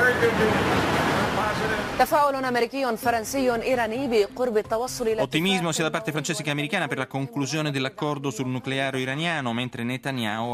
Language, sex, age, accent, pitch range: Italian, male, 30-49, native, 115-150 Hz